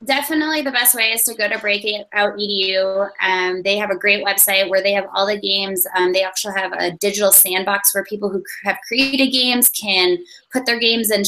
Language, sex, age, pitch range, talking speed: English, female, 20-39, 190-225 Hz, 205 wpm